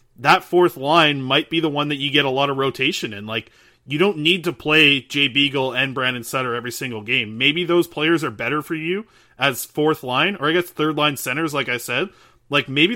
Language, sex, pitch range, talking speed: English, male, 125-150 Hz, 230 wpm